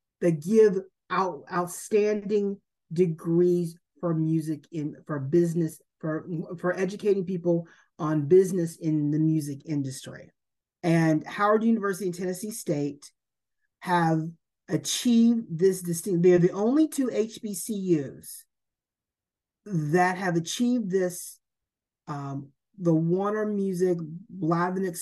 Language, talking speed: English, 105 wpm